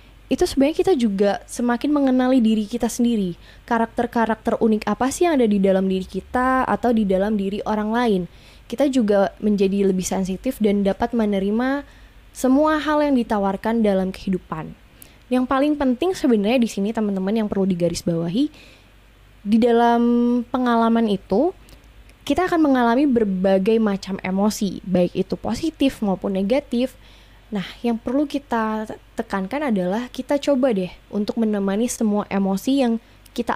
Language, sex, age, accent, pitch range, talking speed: Indonesian, female, 20-39, native, 195-245 Hz, 140 wpm